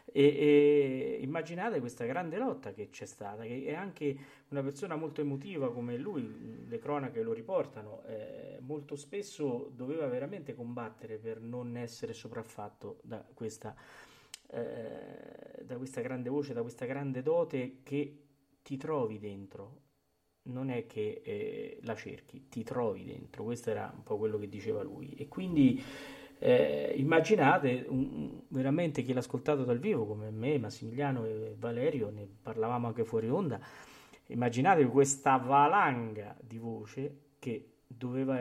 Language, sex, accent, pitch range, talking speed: Italian, male, native, 115-145 Hz, 140 wpm